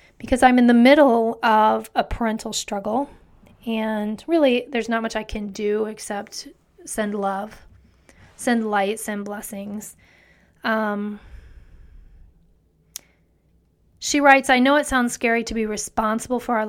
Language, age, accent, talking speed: English, 30-49, American, 135 wpm